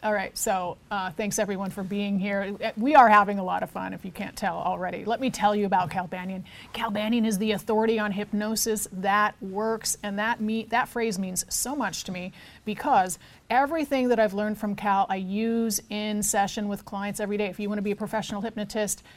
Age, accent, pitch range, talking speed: 30-49, American, 200-230 Hz, 215 wpm